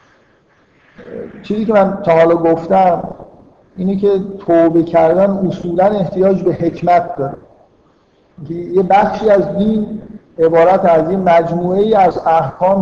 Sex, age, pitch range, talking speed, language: male, 50-69, 160-195 Hz, 120 wpm, Persian